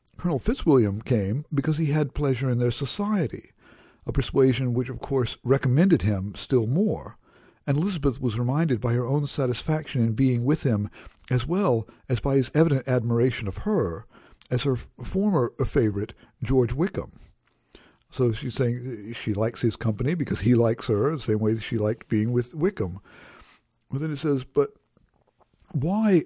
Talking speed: 160 wpm